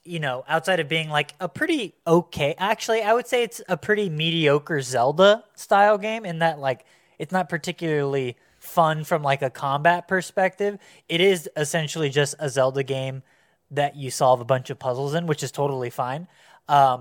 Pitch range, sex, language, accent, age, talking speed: 135-165 Hz, male, English, American, 20-39, 185 wpm